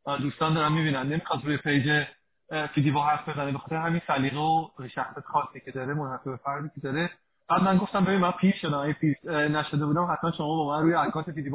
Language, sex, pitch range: Persian, male, 150-195 Hz